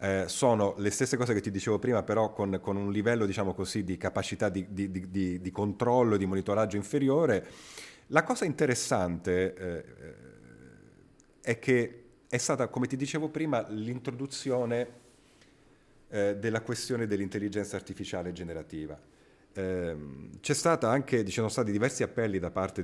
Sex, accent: male, native